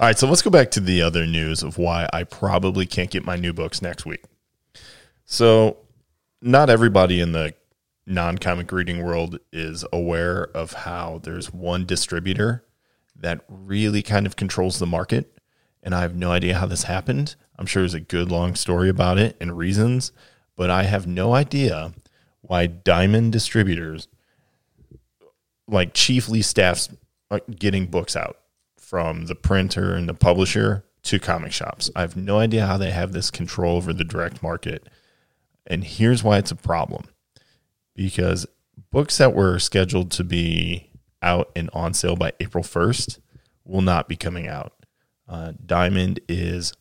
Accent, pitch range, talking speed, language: American, 85-105 Hz, 160 wpm, English